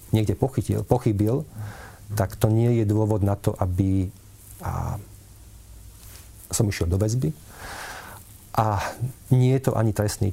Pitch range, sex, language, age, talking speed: 100-115 Hz, male, Slovak, 40-59, 115 wpm